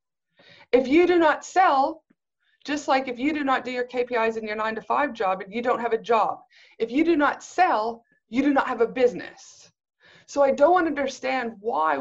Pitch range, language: 210-270 Hz, English